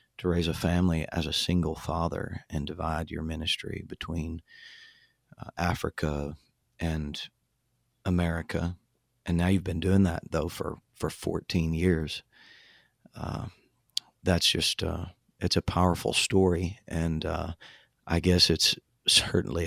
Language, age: English, 40-59